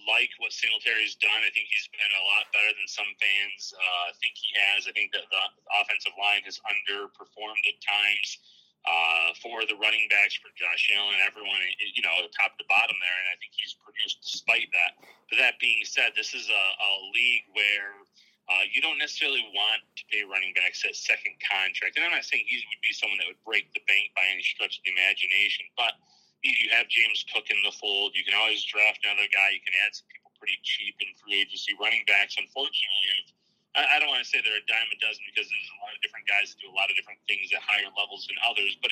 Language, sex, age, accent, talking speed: English, male, 30-49, American, 230 wpm